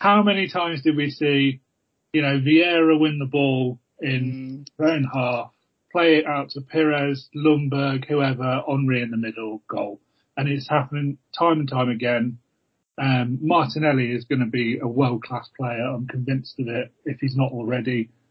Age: 30-49